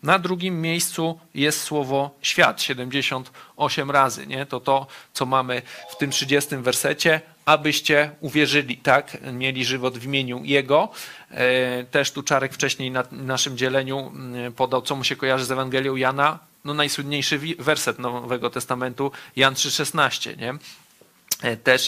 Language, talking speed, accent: Polish, 130 wpm, native